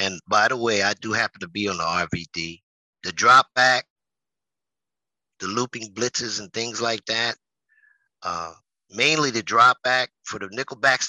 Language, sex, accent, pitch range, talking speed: English, male, American, 110-150 Hz, 160 wpm